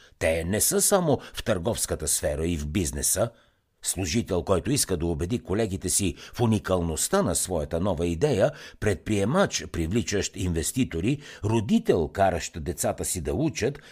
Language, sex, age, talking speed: Bulgarian, male, 60-79, 140 wpm